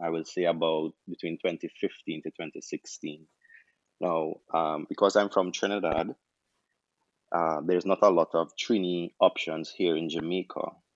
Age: 20-39